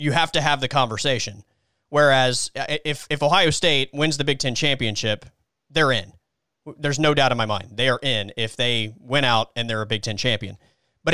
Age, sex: 30-49, male